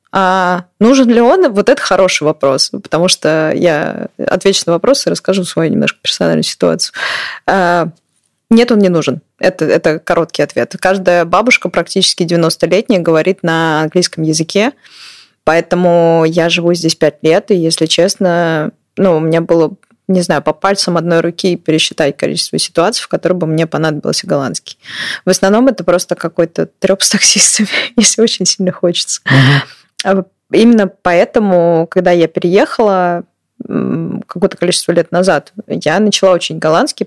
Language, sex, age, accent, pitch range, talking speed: Russian, female, 20-39, native, 165-195 Hz, 145 wpm